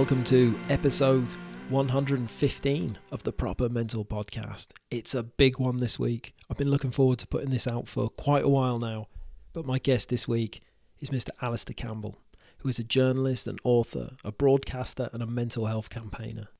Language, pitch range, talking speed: English, 120-135 Hz, 180 wpm